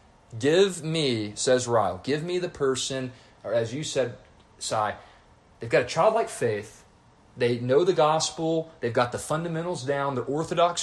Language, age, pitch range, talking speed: English, 30-49, 125-175 Hz, 160 wpm